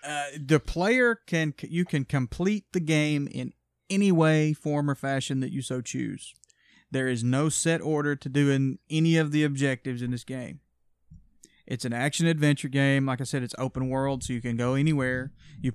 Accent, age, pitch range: American, 30-49, 120-145 Hz